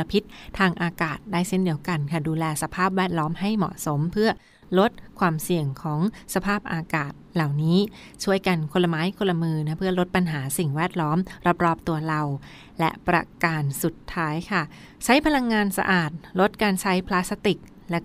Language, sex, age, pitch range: Thai, female, 20-39, 160-190 Hz